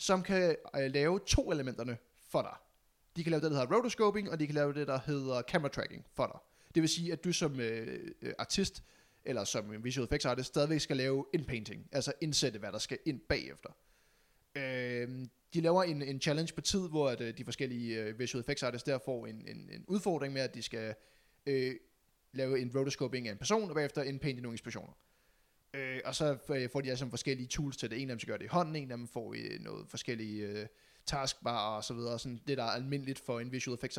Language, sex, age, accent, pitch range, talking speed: Danish, male, 20-39, native, 120-155 Hz, 225 wpm